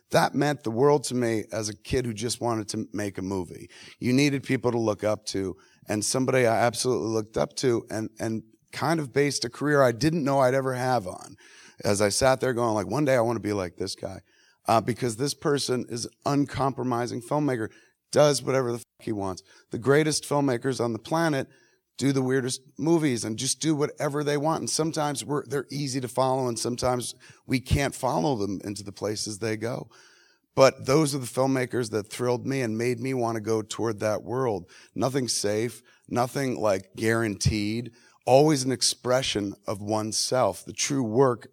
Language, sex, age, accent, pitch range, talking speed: English, male, 30-49, American, 105-135 Hz, 195 wpm